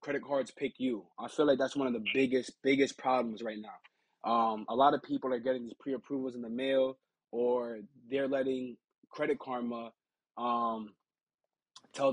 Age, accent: 20-39, American